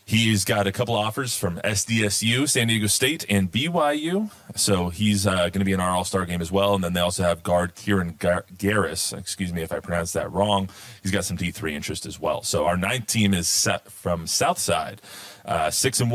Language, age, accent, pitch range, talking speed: English, 30-49, American, 95-100 Hz, 210 wpm